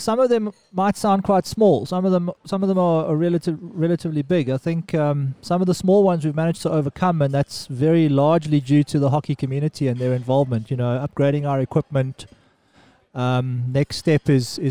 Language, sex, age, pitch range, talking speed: English, male, 30-49, 130-155 Hz, 210 wpm